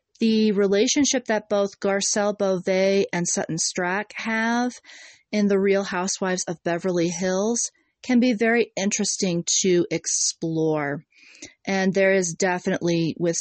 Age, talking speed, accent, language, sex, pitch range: 30-49, 125 wpm, American, English, female, 170-210 Hz